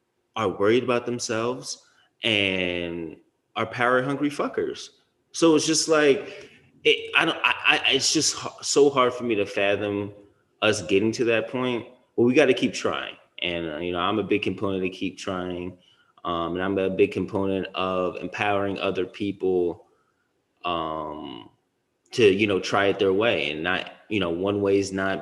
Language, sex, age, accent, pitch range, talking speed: English, male, 20-39, American, 90-120 Hz, 175 wpm